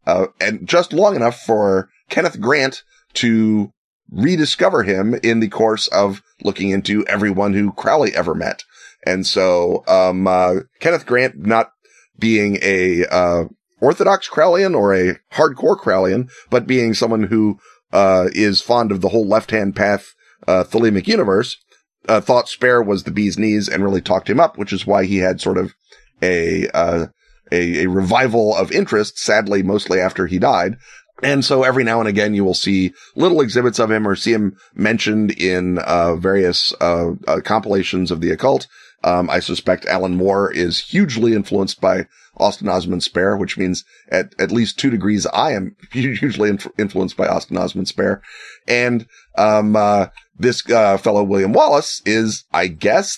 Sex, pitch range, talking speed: male, 95-115 Hz, 170 wpm